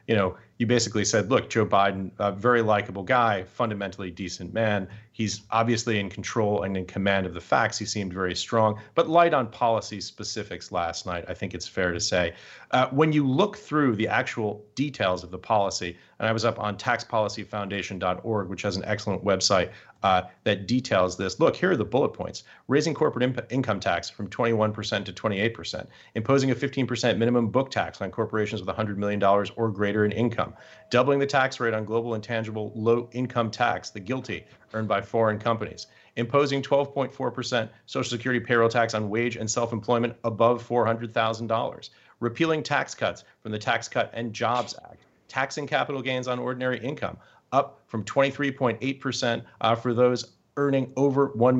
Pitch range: 105-125 Hz